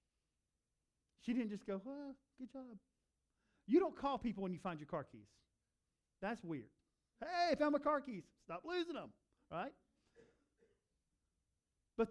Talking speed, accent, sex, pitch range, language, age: 145 wpm, American, male, 145-220 Hz, English, 50-69